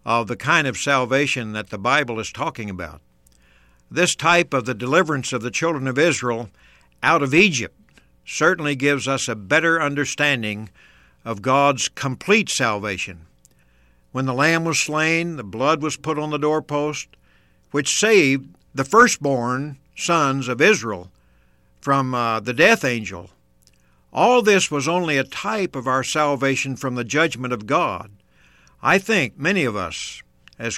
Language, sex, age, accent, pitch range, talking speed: English, male, 60-79, American, 95-150 Hz, 150 wpm